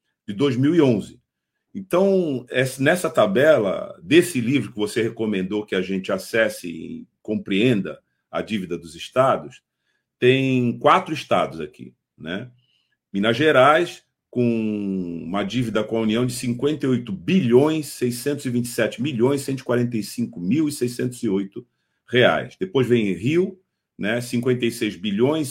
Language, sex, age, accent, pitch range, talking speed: Portuguese, male, 50-69, Brazilian, 120-160 Hz, 110 wpm